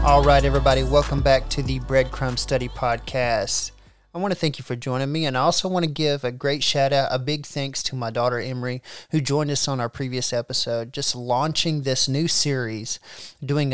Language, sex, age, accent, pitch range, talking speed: English, male, 30-49, American, 125-150 Hz, 205 wpm